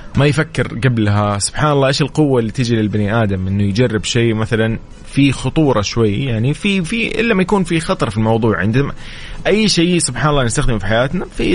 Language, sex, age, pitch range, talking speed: English, male, 30-49, 110-145 Hz, 190 wpm